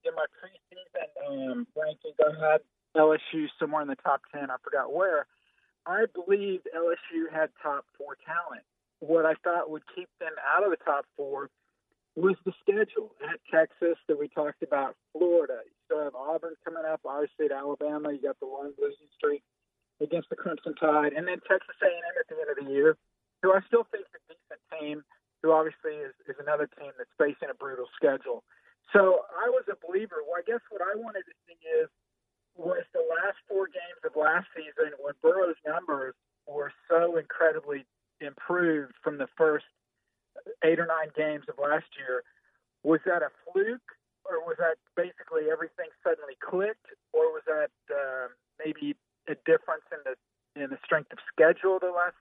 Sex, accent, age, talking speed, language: male, American, 40-59, 185 wpm, English